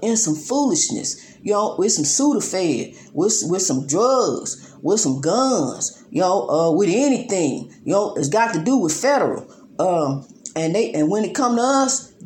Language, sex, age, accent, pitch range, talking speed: English, female, 40-59, American, 175-235 Hz, 180 wpm